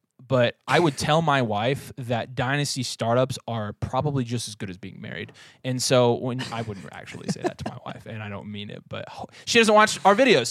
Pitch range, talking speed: 125-160 Hz, 225 wpm